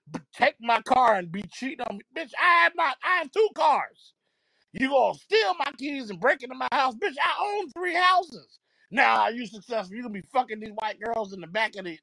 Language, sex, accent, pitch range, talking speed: English, male, American, 185-265 Hz, 250 wpm